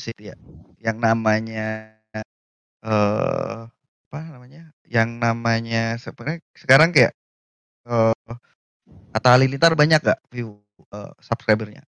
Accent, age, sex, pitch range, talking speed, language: native, 20-39, male, 115-155 Hz, 95 wpm, Indonesian